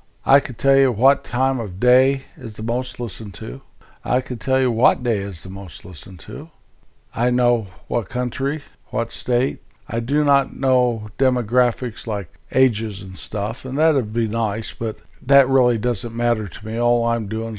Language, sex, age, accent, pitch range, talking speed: English, male, 50-69, American, 110-135 Hz, 185 wpm